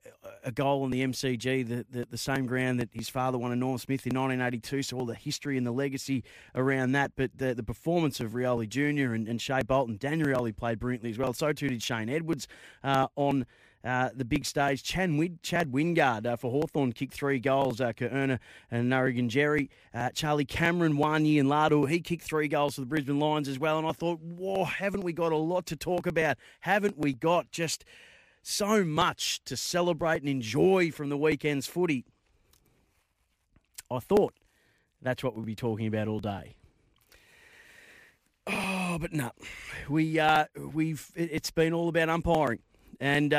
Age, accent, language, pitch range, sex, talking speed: 30-49, Australian, English, 125-155 Hz, male, 185 wpm